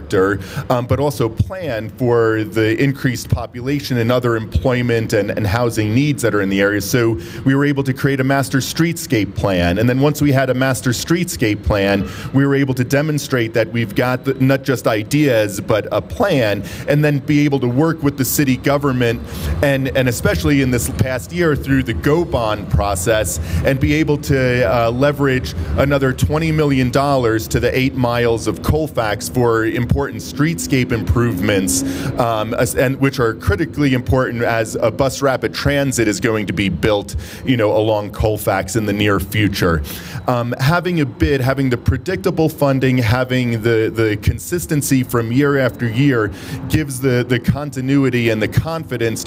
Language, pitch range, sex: English, 110-135 Hz, male